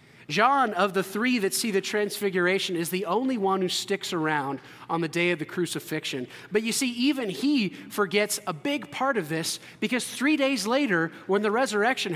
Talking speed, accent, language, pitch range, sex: 190 wpm, American, English, 175-220 Hz, male